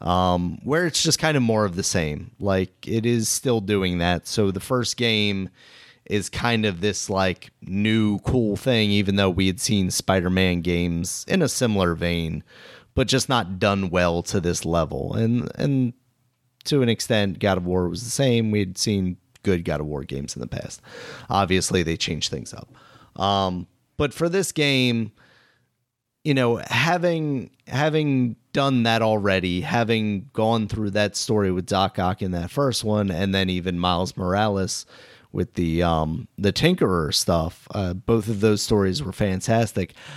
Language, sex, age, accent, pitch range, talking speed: English, male, 30-49, American, 95-120 Hz, 170 wpm